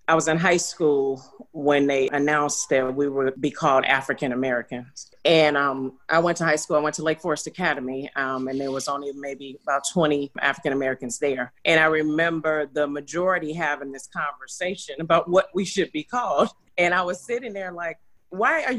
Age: 40-59